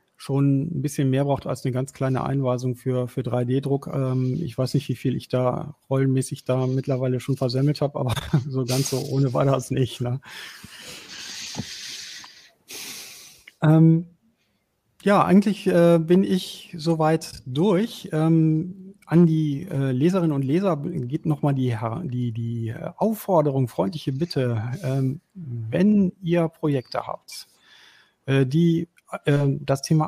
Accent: German